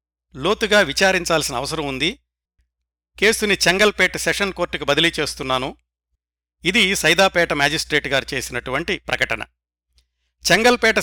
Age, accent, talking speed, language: 60-79, native, 90 wpm, Telugu